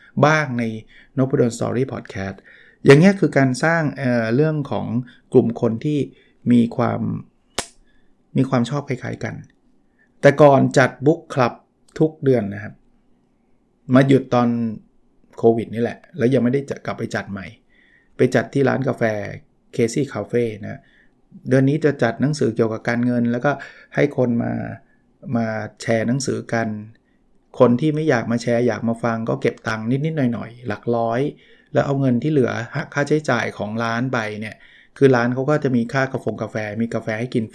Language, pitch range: Thai, 115-140 Hz